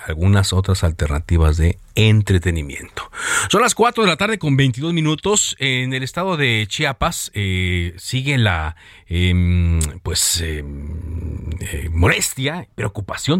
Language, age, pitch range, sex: Spanish, 40-59, 90-125 Hz, male